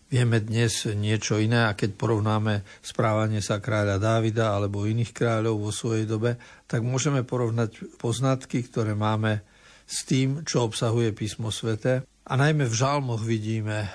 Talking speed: 145 wpm